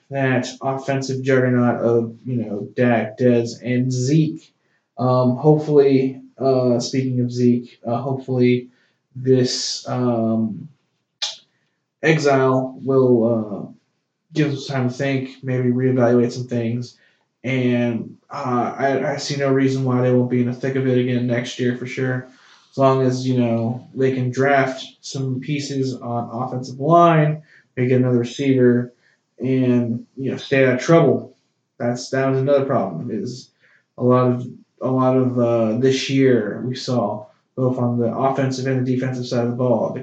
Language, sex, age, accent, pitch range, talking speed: English, male, 20-39, American, 125-135 Hz, 160 wpm